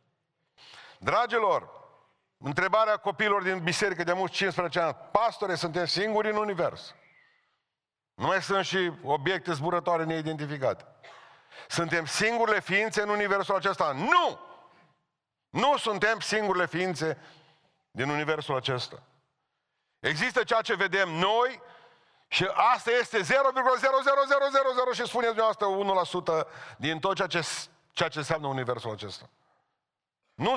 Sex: male